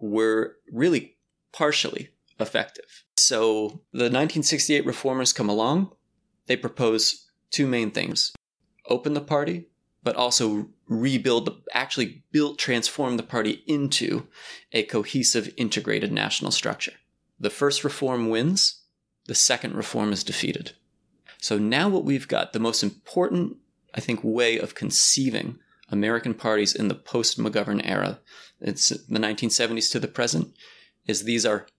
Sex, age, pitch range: male, 30-49, 110-140 Hz